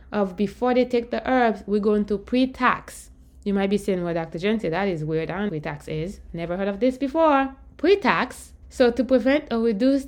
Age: 20-39